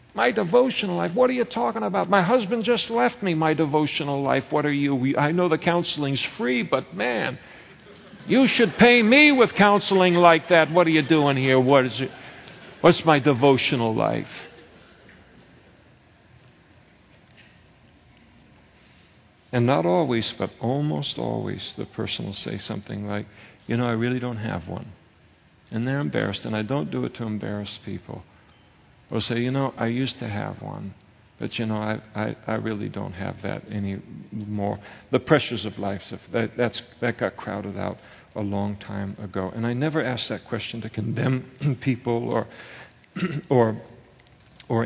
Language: English